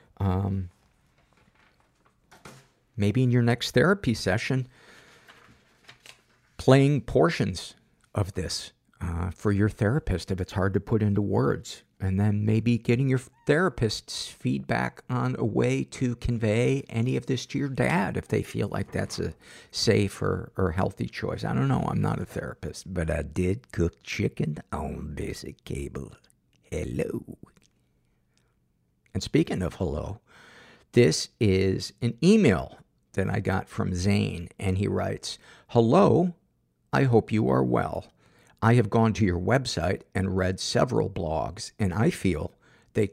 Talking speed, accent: 145 wpm, American